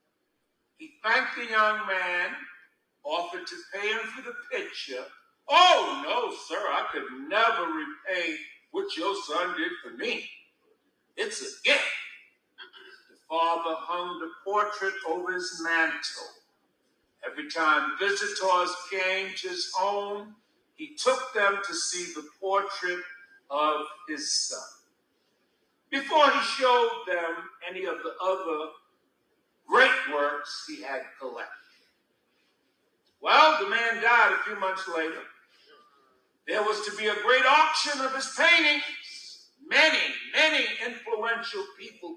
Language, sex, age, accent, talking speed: English, male, 60-79, American, 125 wpm